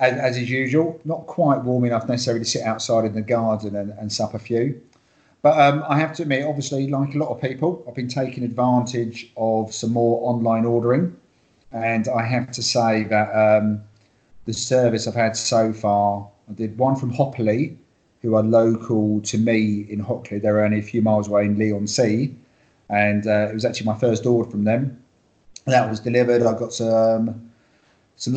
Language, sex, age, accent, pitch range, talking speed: English, male, 40-59, British, 110-125 Hz, 195 wpm